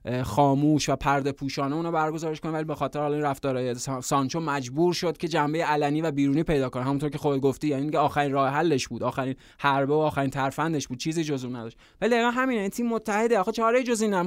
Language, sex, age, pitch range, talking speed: Persian, male, 20-39, 140-170 Hz, 230 wpm